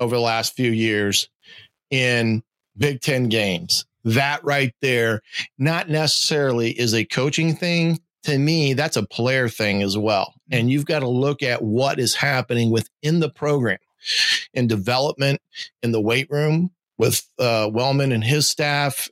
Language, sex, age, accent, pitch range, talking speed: English, male, 40-59, American, 115-140 Hz, 155 wpm